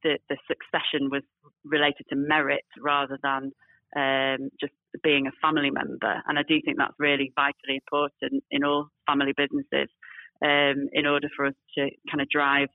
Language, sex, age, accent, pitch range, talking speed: English, female, 30-49, British, 140-160 Hz, 170 wpm